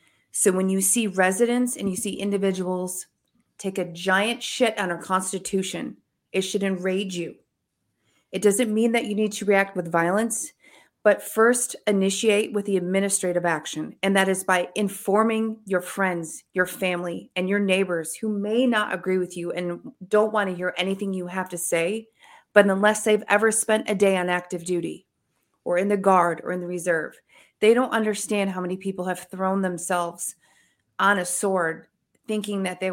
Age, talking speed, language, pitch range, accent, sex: 30-49, 180 wpm, English, 175-205 Hz, American, female